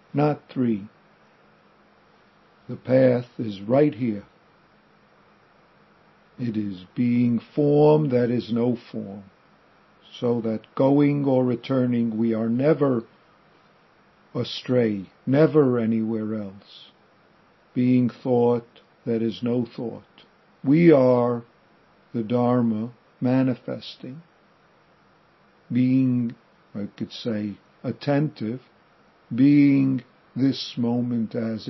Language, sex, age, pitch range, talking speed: English, male, 50-69, 115-135 Hz, 90 wpm